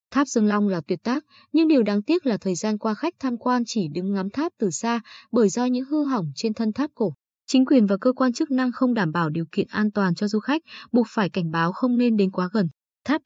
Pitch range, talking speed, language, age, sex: 200-265 Hz, 265 wpm, Vietnamese, 20-39, female